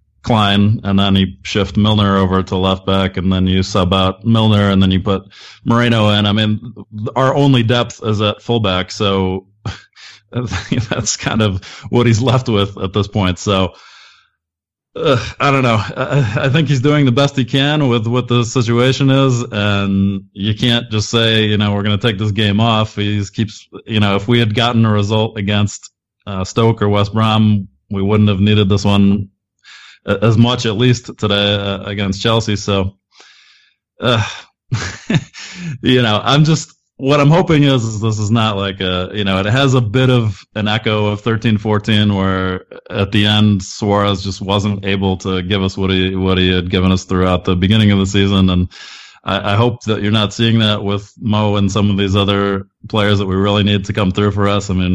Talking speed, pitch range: 200 wpm, 100-115 Hz